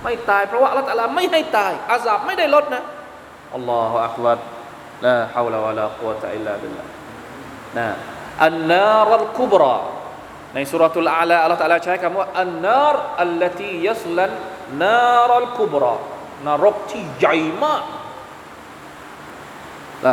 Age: 20-39